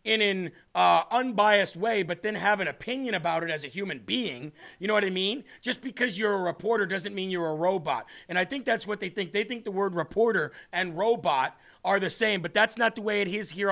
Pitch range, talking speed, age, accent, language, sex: 180-210 Hz, 245 wpm, 40-59, American, English, male